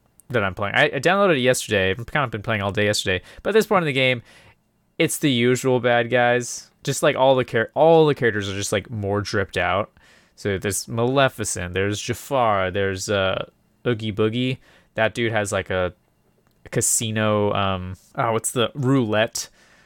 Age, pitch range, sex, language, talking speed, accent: 20-39, 105-135 Hz, male, English, 185 wpm, American